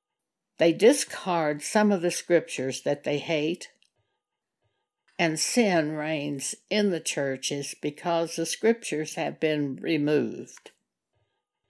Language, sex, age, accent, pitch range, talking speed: English, female, 60-79, American, 155-200 Hz, 110 wpm